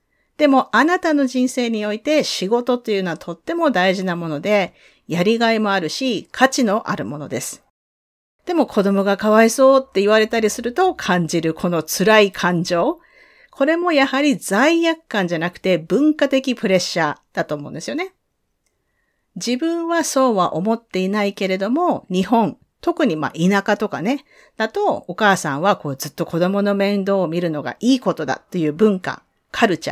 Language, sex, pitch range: Japanese, female, 180-270 Hz